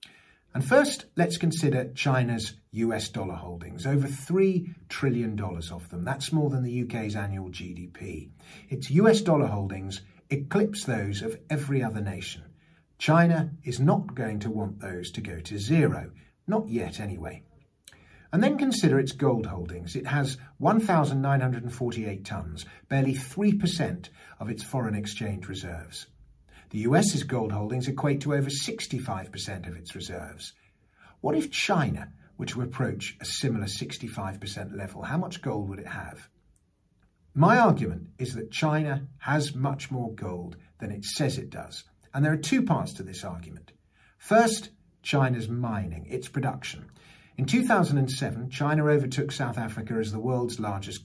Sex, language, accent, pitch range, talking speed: male, English, British, 100-145 Hz, 150 wpm